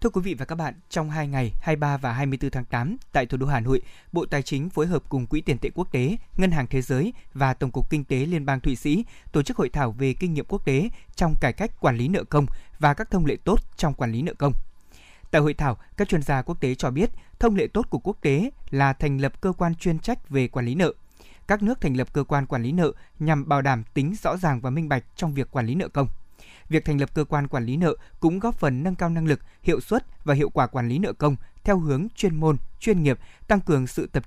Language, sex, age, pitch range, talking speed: Vietnamese, male, 20-39, 135-170 Hz, 270 wpm